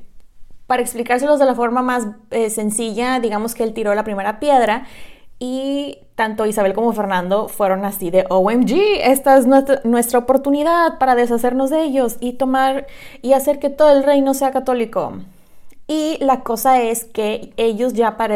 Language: Spanish